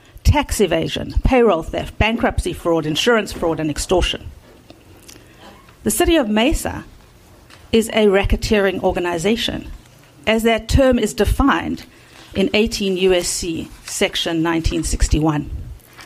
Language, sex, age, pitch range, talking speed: English, female, 50-69, 165-225 Hz, 105 wpm